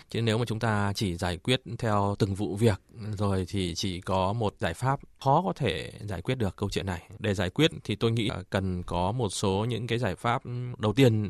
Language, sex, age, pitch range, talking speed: Vietnamese, male, 20-39, 100-130 Hz, 240 wpm